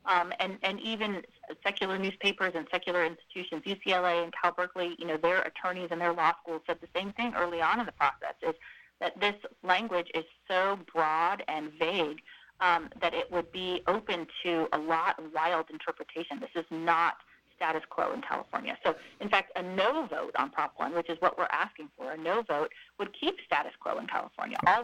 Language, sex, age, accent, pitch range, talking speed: English, female, 30-49, American, 165-200 Hz, 200 wpm